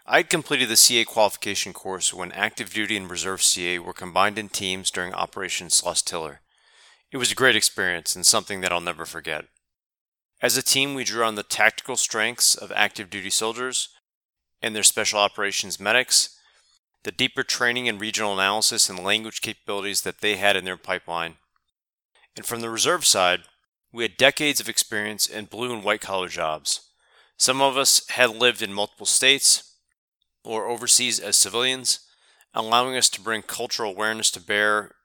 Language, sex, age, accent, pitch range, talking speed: English, male, 30-49, American, 95-115 Hz, 175 wpm